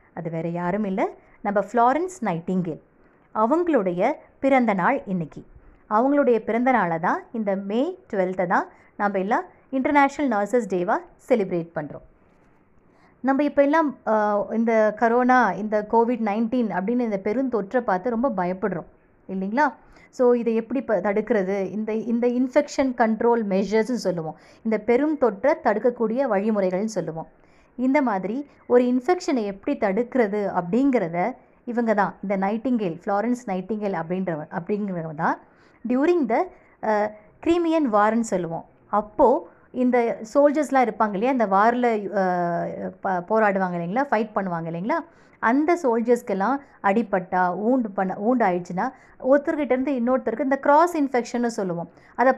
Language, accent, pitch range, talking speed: Tamil, native, 195-260 Hz, 120 wpm